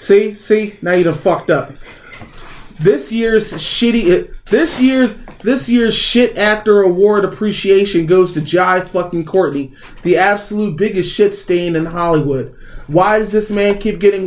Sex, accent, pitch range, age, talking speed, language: male, American, 170-215 Hz, 30-49, 150 wpm, English